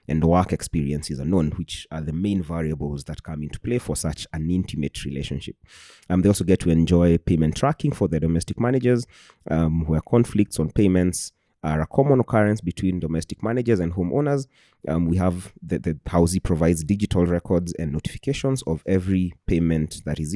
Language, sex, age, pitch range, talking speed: English, male, 30-49, 85-110 Hz, 180 wpm